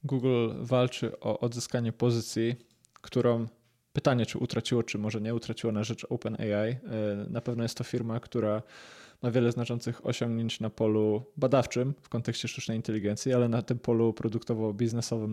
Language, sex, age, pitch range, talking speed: Polish, male, 20-39, 115-140 Hz, 145 wpm